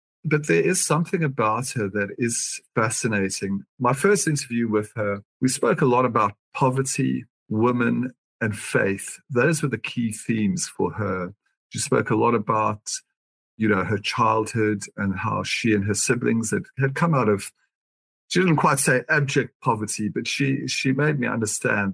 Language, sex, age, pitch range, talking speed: English, male, 50-69, 105-135 Hz, 170 wpm